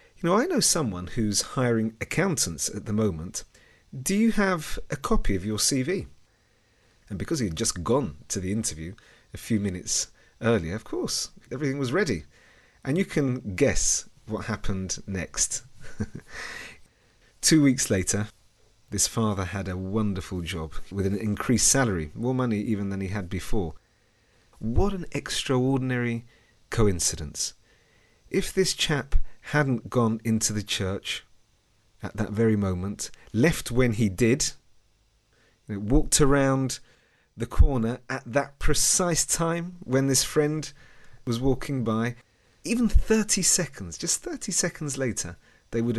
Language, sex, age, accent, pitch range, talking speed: English, male, 40-59, British, 100-135 Hz, 140 wpm